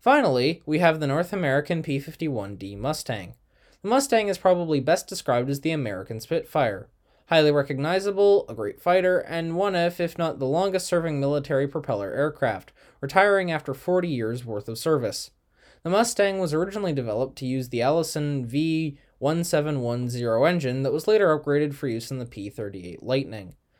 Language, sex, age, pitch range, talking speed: English, male, 20-39, 125-165 Hz, 155 wpm